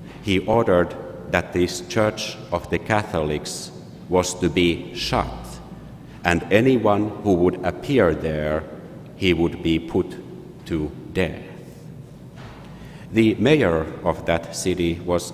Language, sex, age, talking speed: English, male, 50-69, 115 wpm